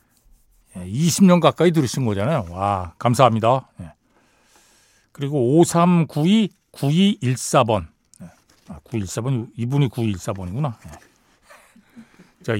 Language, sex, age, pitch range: Korean, male, 60-79, 115-165 Hz